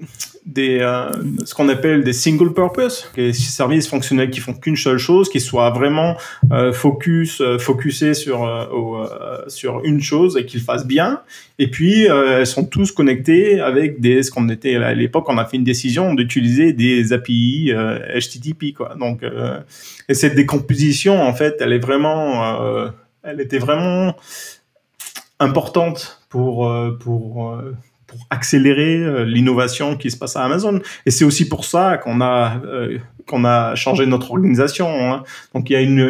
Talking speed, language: 175 wpm, French